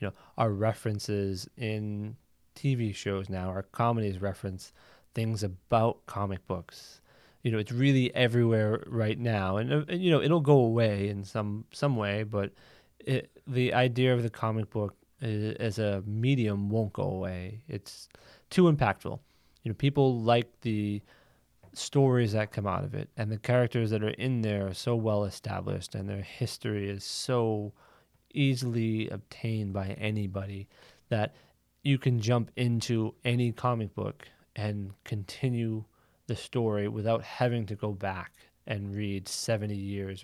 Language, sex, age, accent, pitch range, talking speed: English, male, 20-39, American, 100-120 Hz, 150 wpm